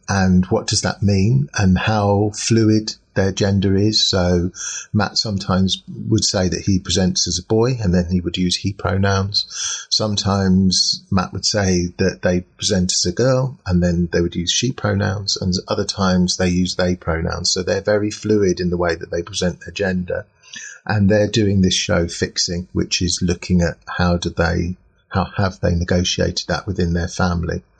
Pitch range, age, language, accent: 90-105 Hz, 30-49, English, British